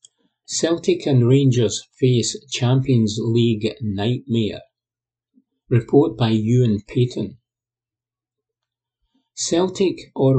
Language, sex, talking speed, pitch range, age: English, male, 75 wpm, 115-140 Hz, 50-69